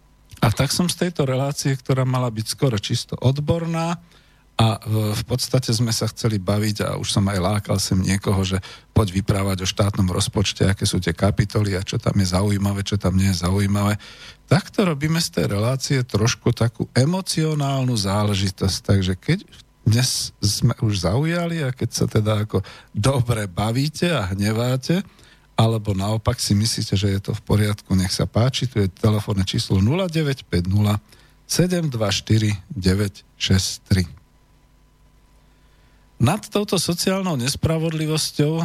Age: 50-69